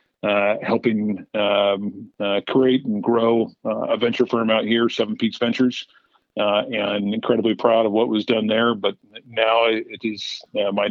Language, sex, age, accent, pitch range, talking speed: English, male, 50-69, American, 100-115 Hz, 170 wpm